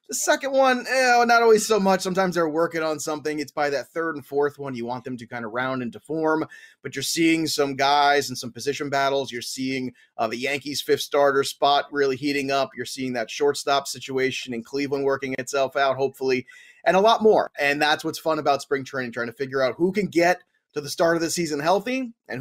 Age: 30-49